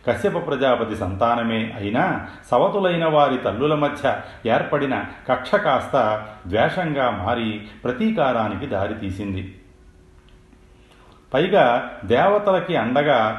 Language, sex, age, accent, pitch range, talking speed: Telugu, male, 40-59, native, 105-135 Hz, 80 wpm